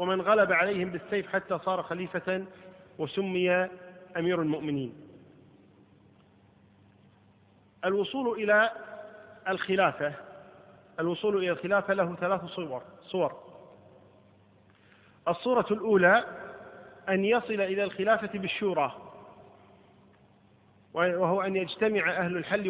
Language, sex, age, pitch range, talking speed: Arabic, male, 40-59, 150-200 Hz, 85 wpm